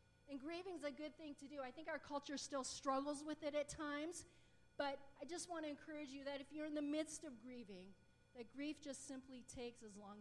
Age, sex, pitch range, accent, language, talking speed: 40-59, female, 230-280 Hz, American, English, 235 wpm